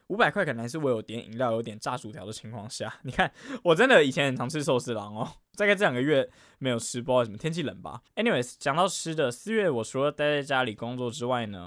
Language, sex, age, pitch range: Chinese, male, 10-29, 115-155 Hz